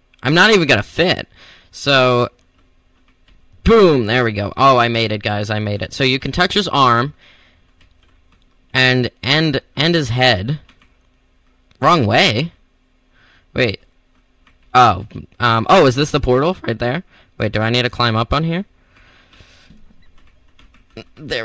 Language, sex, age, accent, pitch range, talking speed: English, male, 10-29, American, 90-130 Hz, 145 wpm